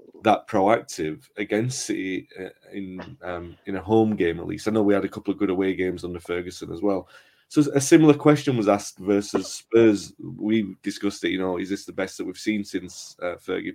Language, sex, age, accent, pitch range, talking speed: English, male, 30-49, British, 95-110 Hz, 215 wpm